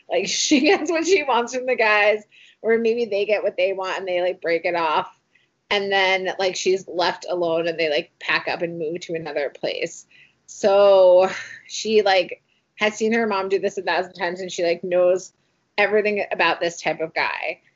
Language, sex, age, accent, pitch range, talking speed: English, female, 20-39, American, 175-220 Hz, 205 wpm